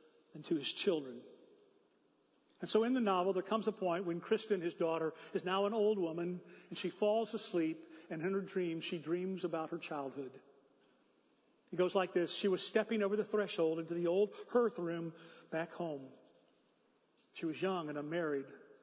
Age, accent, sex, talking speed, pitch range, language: 40-59, American, male, 180 wpm, 165-210 Hz, English